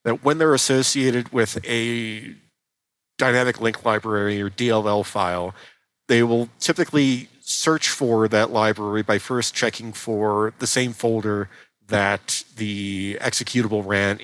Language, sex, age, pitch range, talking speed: English, male, 40-59, 105-125 Hz, 125 wpm